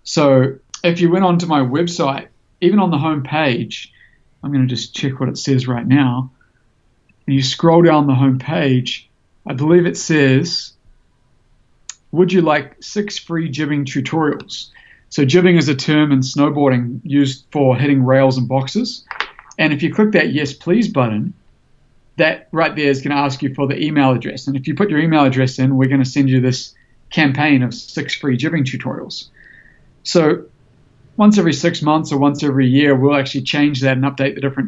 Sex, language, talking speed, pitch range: male, English, 190 wpm, 130-150 Hz